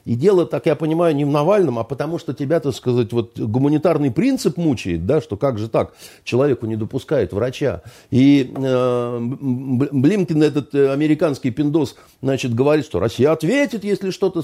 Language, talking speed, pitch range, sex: Russian, 165 wpm, 110-160 Hz, male